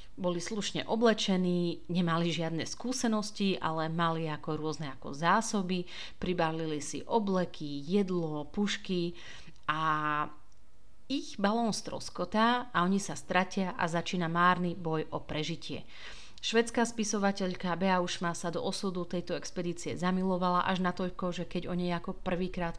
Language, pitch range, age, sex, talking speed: Slovak, 165-190 Hz, 30-49, female, 125 wpm